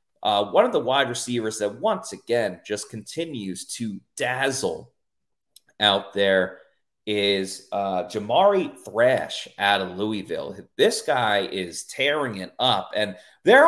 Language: English